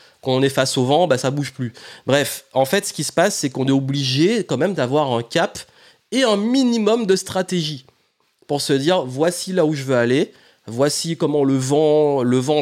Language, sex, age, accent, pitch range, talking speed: French, male, 30-49, French, 130-170 Hz, 230 wpm